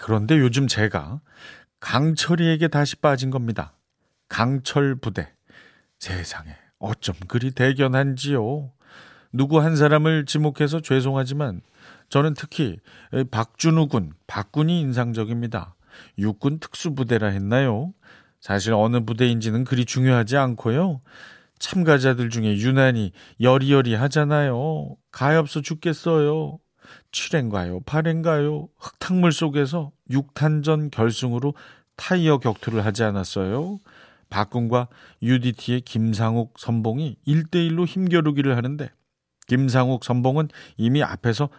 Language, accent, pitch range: Korean, native, 115-150 Hz